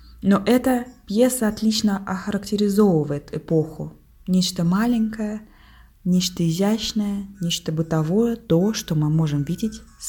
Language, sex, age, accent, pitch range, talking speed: Russian, female, 20-39, native, 150-200 Hz, 100 wpm